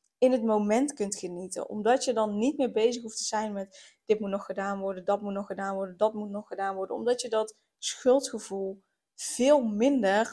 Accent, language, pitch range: Dutch, Dutch, 205-235 Hz